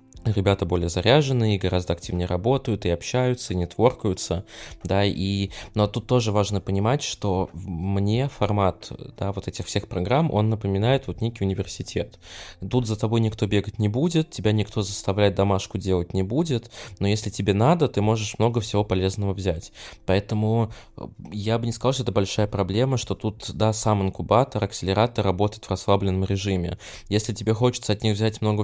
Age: 20-39